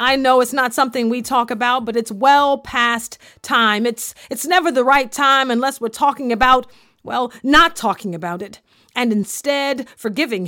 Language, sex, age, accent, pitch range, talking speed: English, female, 40-59, American, 205-255 Hz, 180 wpm